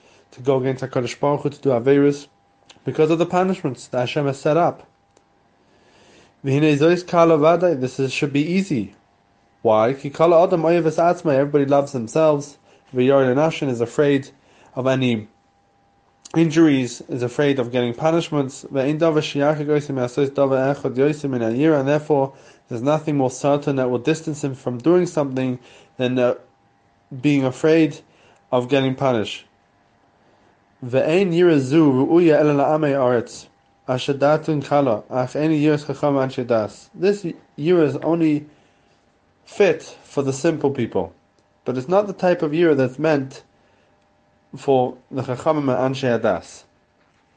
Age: 20-39